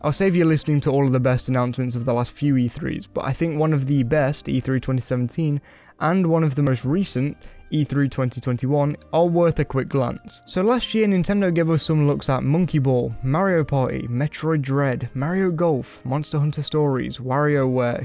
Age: 10-29